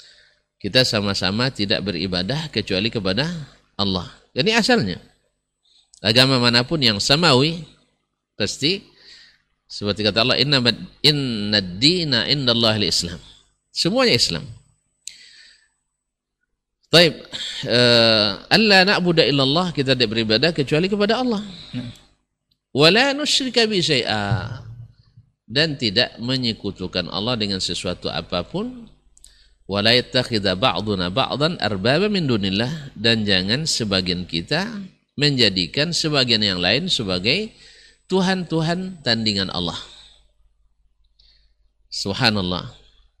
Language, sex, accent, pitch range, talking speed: Indonesian, male, native, 95-145 Hz, 85 wpm